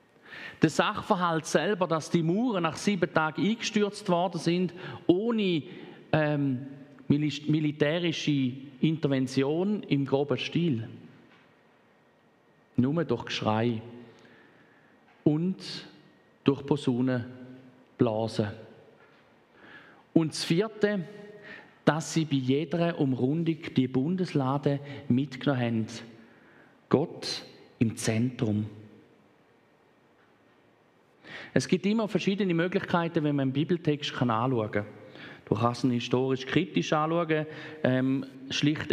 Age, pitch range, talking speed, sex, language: 40-59, 130-170 Hz, 90 wpm, male, German